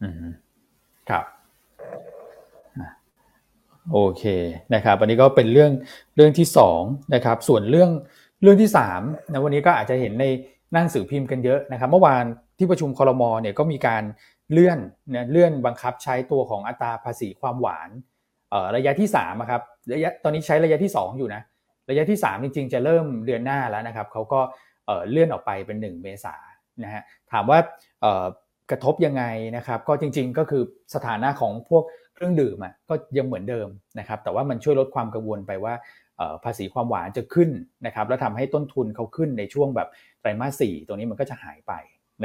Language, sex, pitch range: Thai, male, 110-150 Hz